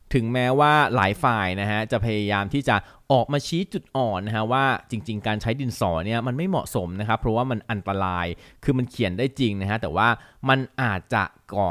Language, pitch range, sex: Thai, 100-125 Hz, male